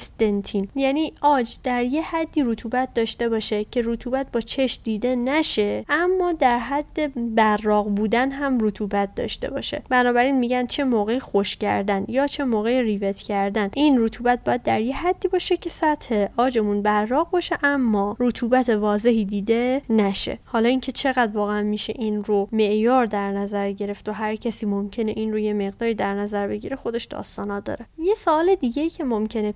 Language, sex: Persian, female